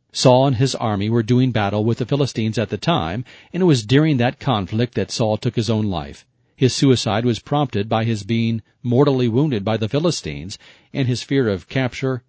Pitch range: 110-135 Hz